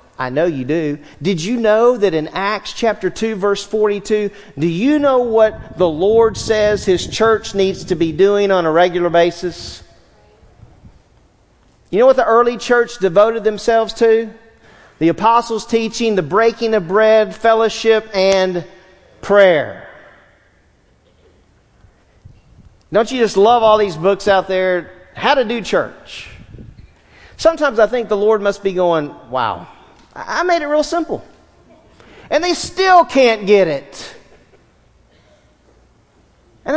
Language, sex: English, male